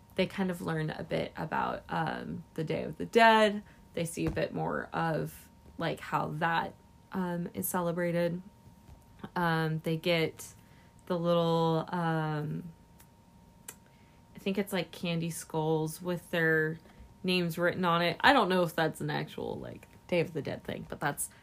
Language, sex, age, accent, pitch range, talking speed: English, female, 20-39, American, 160-200 Hz, 160 wpm